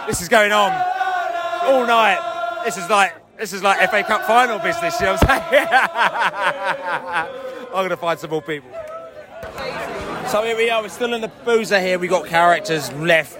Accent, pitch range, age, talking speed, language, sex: British, 155-195 Hz, 30-49, 190 wpm, English, male